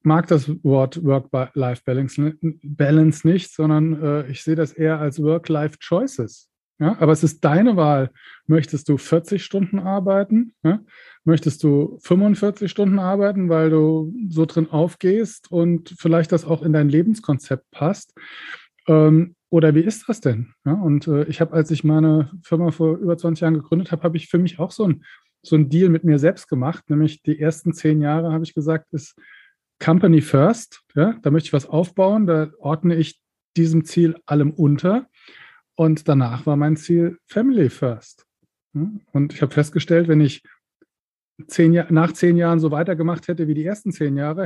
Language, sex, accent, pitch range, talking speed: German, male, German, 145-170 Hz, 165 wpm